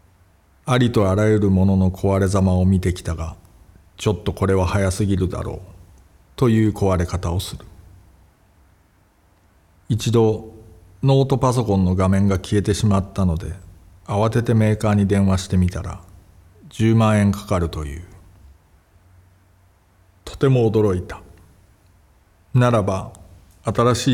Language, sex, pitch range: Japanese, male, 90-105 Hz